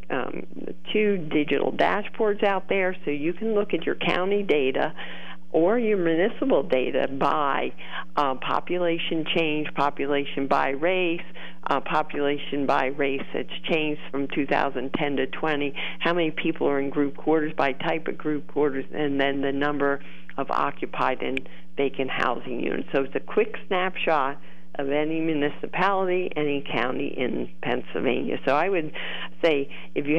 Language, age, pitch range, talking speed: English, 50-69, 140-170 Hz, 150 wpm